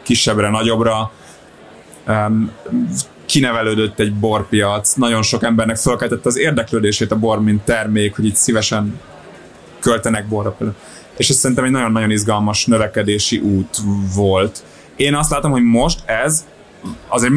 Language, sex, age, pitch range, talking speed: English, male, 30-49, 105-125 Hz, 125 wpm